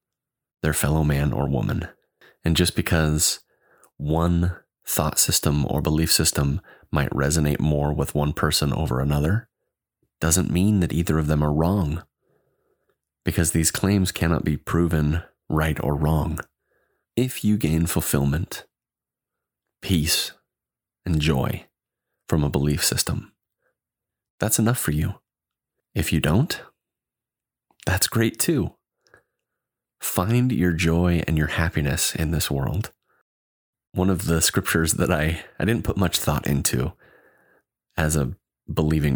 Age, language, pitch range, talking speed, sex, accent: 30-49, English, 75-90 Hz, 130 wpm, male, American